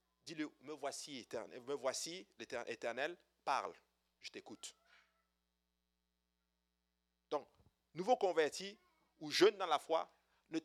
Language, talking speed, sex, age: French, 115 wpm, male, 50-69